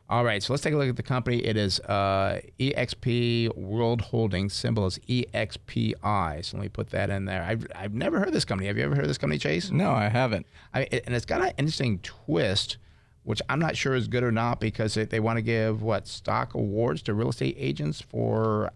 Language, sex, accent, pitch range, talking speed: English, male, American, 105-125 Hz, 225 wpm